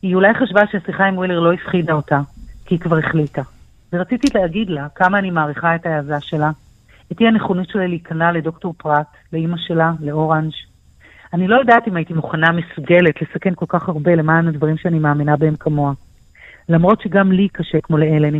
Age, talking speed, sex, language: 40-59, 175 wpm, female, Hebrew